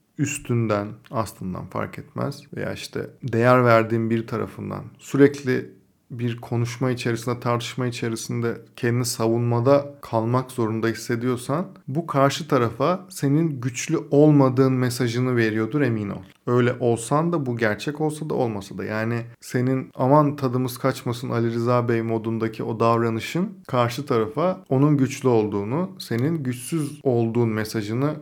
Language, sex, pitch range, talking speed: Turkish, male, 115-140 Hz, 130 wpm